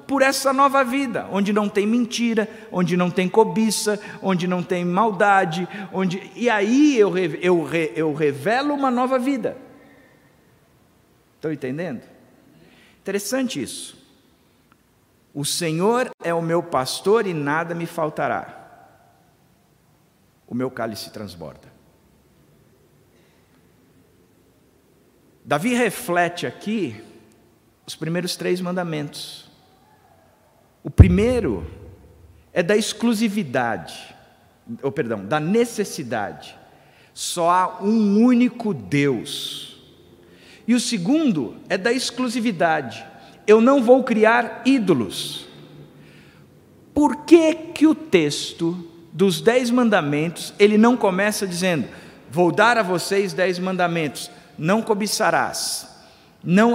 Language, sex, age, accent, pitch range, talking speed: Portuguese, male, 50-69, Brazilian, 155-230 Hz, 105 wpm